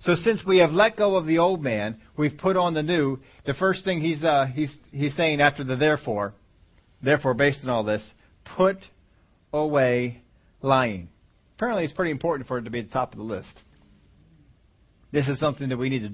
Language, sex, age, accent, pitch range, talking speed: English, male, 40-59, American, 110-150 Hz, 205 wpm